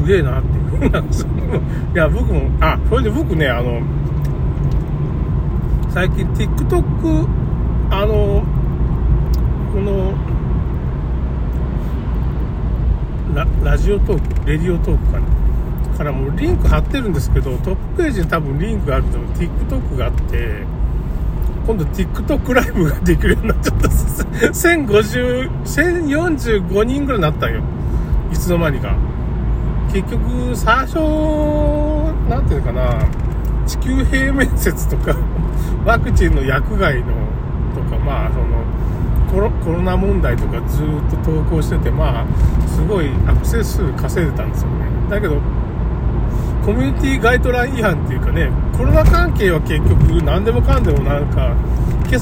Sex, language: male, Japanese